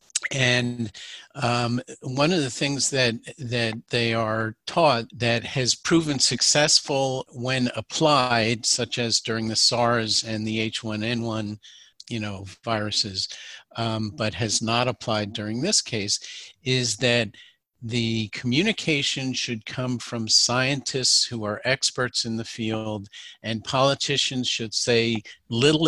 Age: 50-69